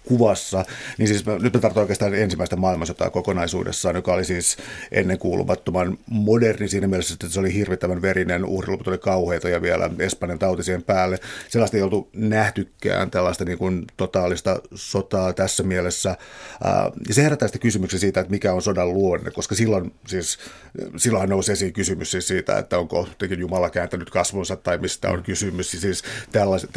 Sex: male